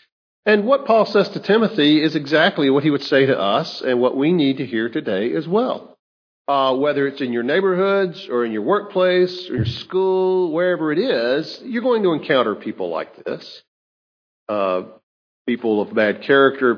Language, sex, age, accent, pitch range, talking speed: English, male, 50-69, American, 125-180 Hz, 180 wpm